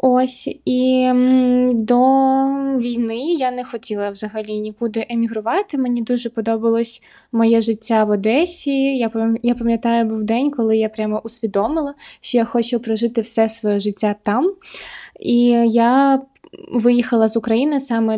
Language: English